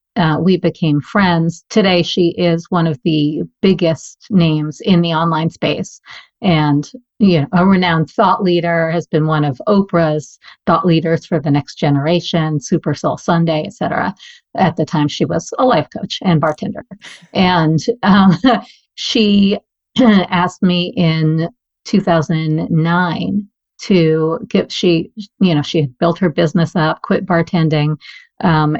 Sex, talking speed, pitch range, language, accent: female, 145 wpm, 160-190 Hz, English, American